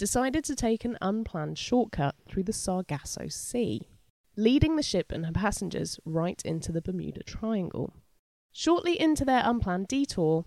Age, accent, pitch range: 20-39, British, 160-245 Hz